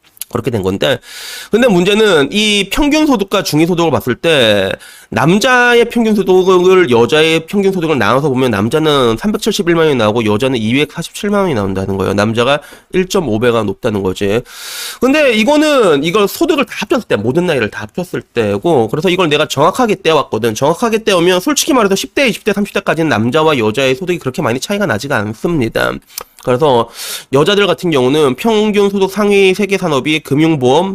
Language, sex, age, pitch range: Korean, male, 30-49, 125-205 Hz